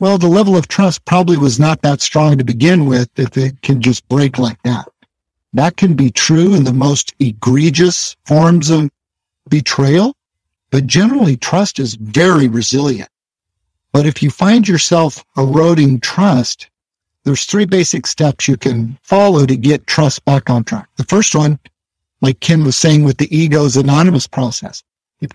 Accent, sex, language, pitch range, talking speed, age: American, male, English, 130-175 Hz, 165 wpm, 50-69